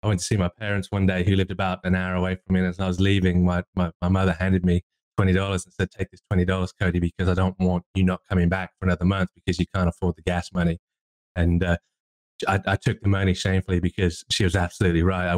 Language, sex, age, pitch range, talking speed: English, male, 20-39, 85-95 Hz, 265 wpm